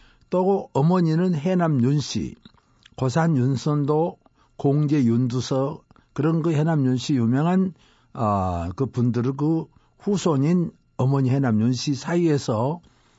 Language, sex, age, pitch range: Korean, male, 60-79, 125-175 Hz